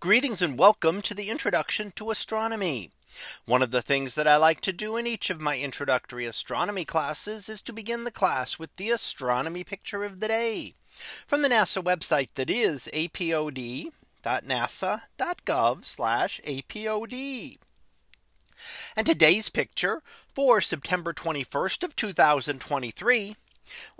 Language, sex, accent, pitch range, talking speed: English, male, American, 150-225 Hz, 130 wpm